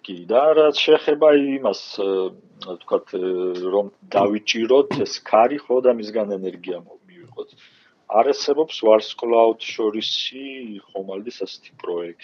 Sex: male